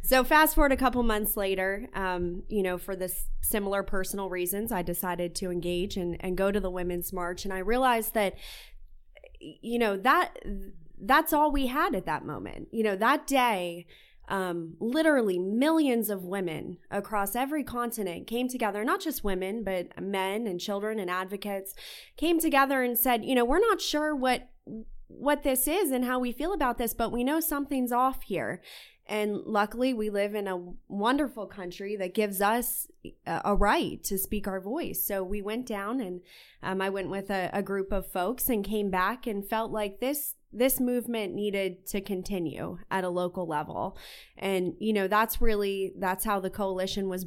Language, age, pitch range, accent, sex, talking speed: English, 20-39, 190-245 Hz, American, female, 185 wpm